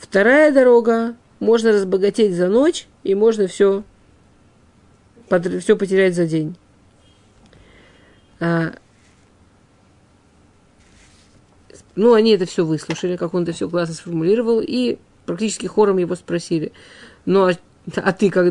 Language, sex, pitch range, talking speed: Russian, female, 160-210 Hz, 115 wpm